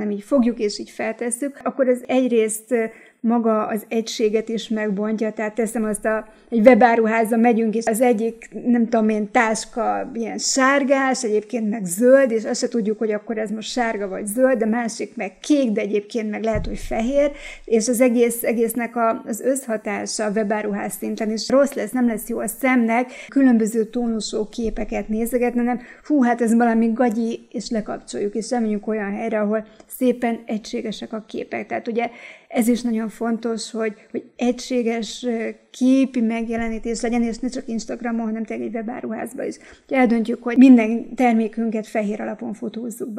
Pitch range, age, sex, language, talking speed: 220-245 Hz, 30-49, female, Hungarian, 170 wpm